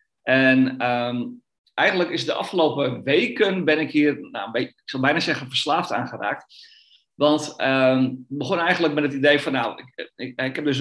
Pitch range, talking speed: 130-165 Hz, 160 wpm